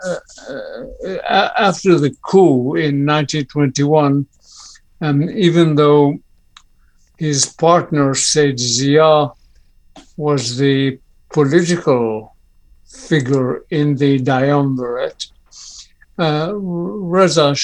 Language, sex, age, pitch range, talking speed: English, male, 60-79, 140-160 Hz, 80 wpm